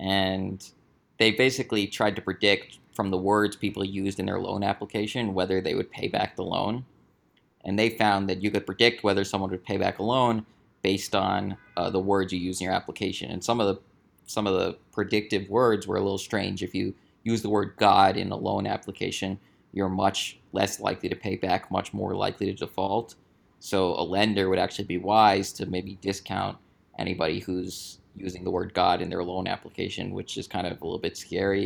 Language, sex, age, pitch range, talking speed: English, male, 20-39, 95-110 Hz, 205 wpm